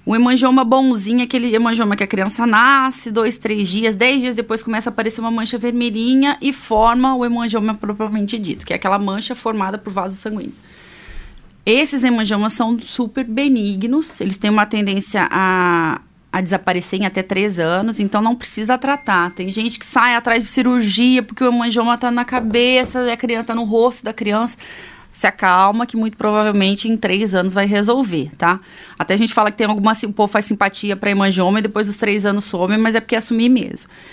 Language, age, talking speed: Portuguese, 30-49, 195 wpm